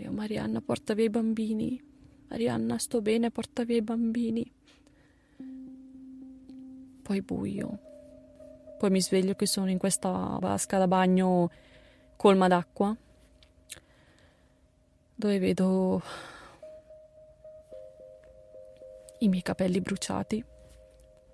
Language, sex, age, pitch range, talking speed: Italian, female, 20-39, 175-240 Hz, 90 wpm